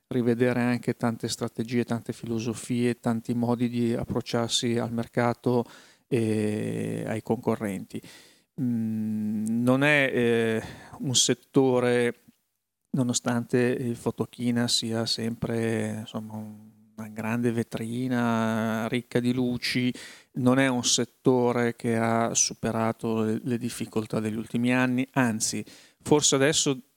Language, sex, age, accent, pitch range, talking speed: Italian, male, 40-59, native, 115-130 Hz, 100 wpm